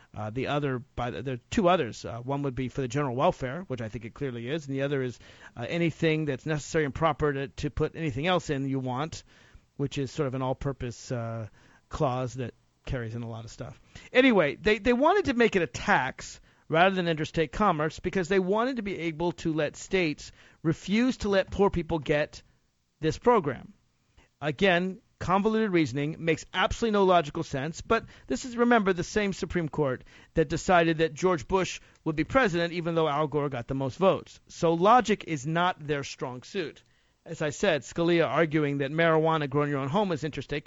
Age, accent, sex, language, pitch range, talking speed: 50-69, American, male, English, 140-190 Hz, 205 wpm